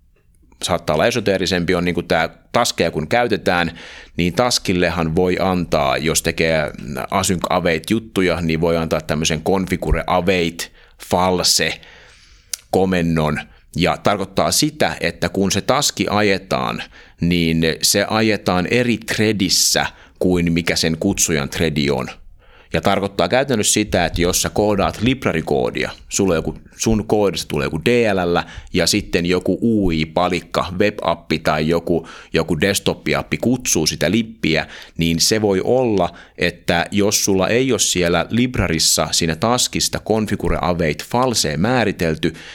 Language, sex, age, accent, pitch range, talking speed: Finnish, male, 30-49, native, 80-100 Hz, 125 wpm